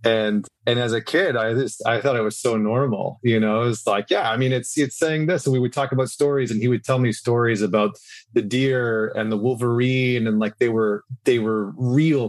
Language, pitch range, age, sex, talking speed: English, 105-125 Hz, 30-49, male, 245 wpm